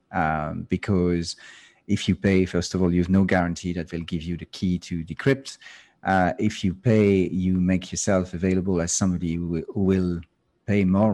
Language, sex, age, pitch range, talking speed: English, male, 40-59, 90-100 Hz, 185 wpm